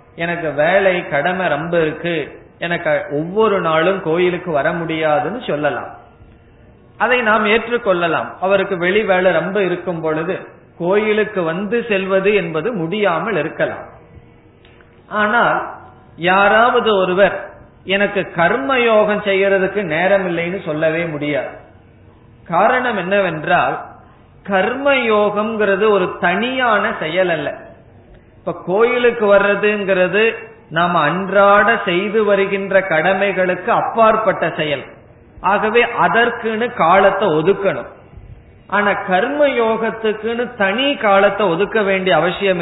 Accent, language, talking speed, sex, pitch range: native, Tamil, 95 wpm, male, 170-210 Hz